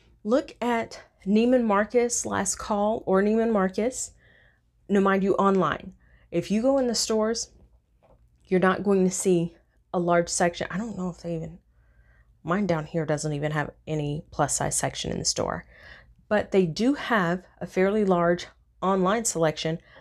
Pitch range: 165-215 Hz